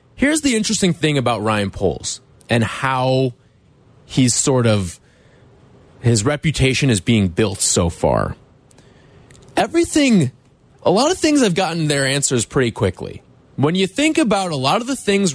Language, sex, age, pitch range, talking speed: English, male, 20-39, 115-160 Hz, 155 wpm